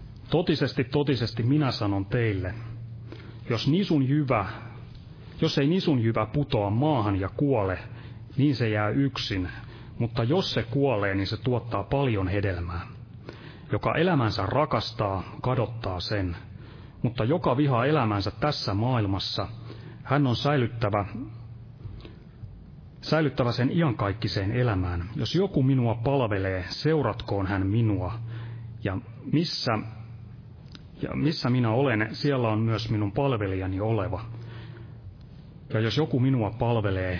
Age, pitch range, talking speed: 30-49, 105-135 Hz, 115 wpm